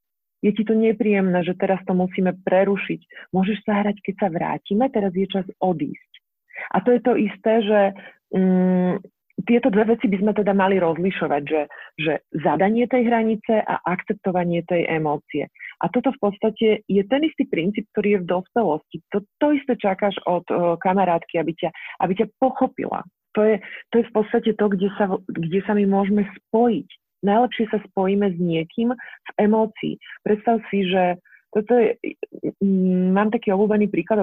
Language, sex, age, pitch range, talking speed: Slovak, female, 40-59, 175-210 Hz, 170 wpm